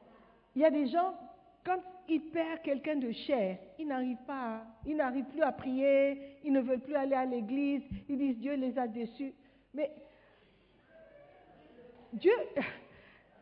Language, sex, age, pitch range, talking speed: French, female, 50-69, 230-320 Hz, 150 wpm